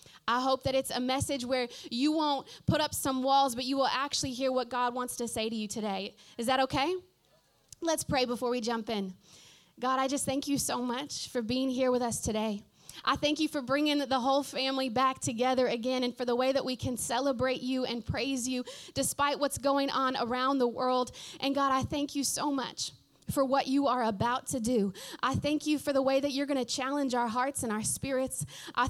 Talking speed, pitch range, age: 225 wpm, 240-275 Hz, 20-39